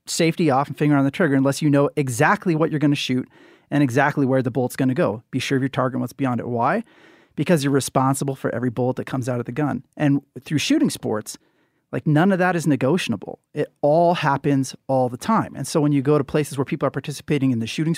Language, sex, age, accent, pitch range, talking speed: English, male, 30-49, American, 135-160 Hz, 255 wpm